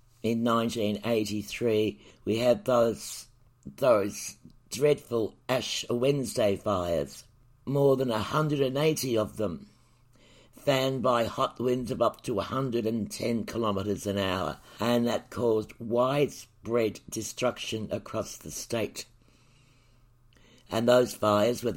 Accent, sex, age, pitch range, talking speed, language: British, male, 60-79, 110-125 Hz, 105 wpm, English